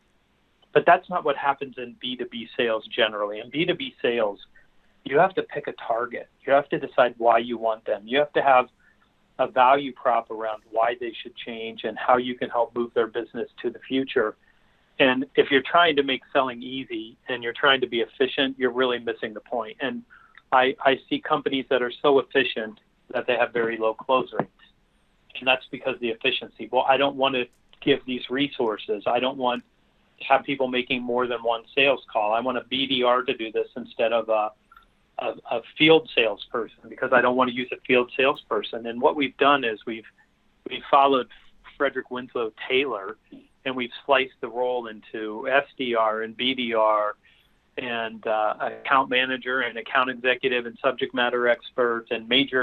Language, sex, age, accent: English, male, 40-59, American